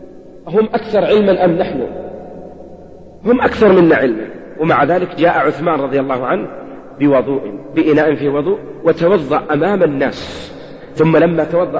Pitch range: 135-170 Hz